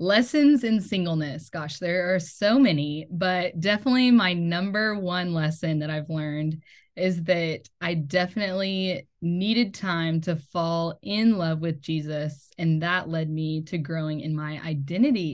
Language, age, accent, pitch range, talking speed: English, 10-29, American, 155-200 Hz, 150 wpm